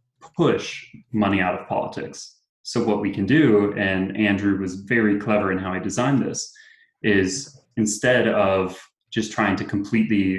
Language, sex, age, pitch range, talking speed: English, male, 20-39, 95-115 Hz, 155 wpm